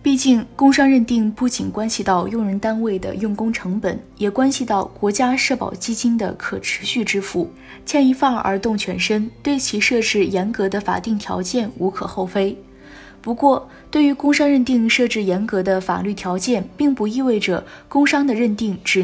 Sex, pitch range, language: female, 190-250 Hz, Chinese